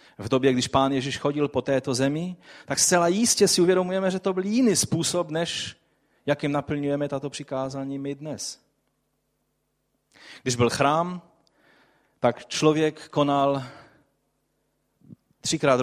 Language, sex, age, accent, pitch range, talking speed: Czech, male, 30-49, native, 130-160 Hz, 125 wpm